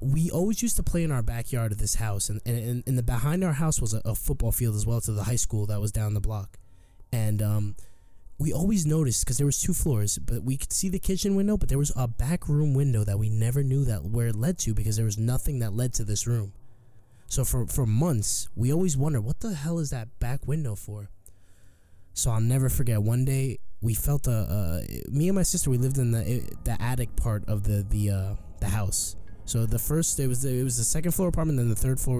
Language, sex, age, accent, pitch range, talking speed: English, male, 20-39, American, 105-135 Hz, 260 wpm